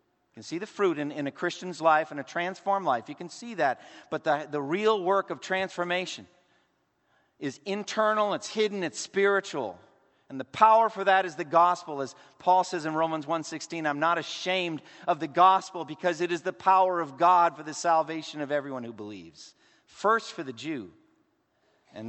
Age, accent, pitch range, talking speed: 40-59, American, 145-185 Hz, 190 wpm